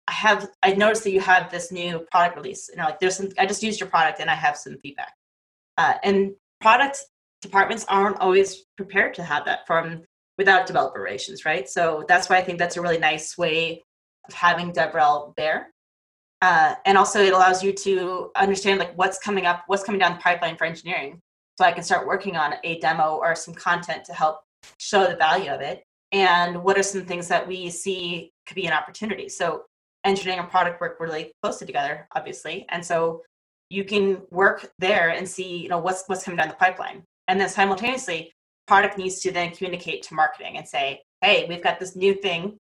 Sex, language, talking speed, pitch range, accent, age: female, English, 205 wpm, 170-195 Hz, American, 20-39